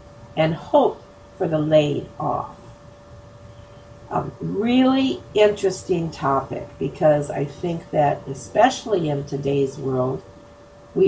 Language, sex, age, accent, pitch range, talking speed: English, female, 50-69, American, 135-175 Hz, 105 wpm